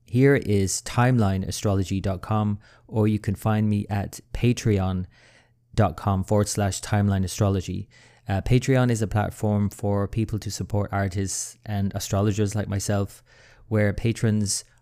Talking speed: 115 wpm